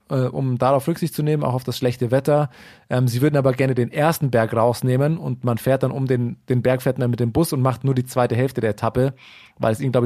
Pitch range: 120-145 Hz